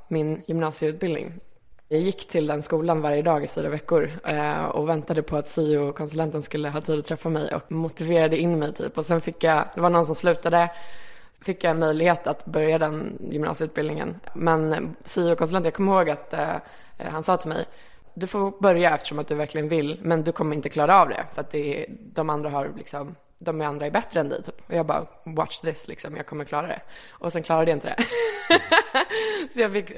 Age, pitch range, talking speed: 20-39, 155-180 Hz, 205 wpm